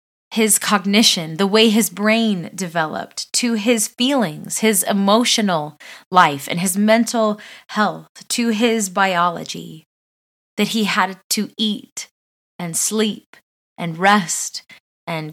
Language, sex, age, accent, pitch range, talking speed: English, female, 20-39, American, 170-220 Hz, 115 wpm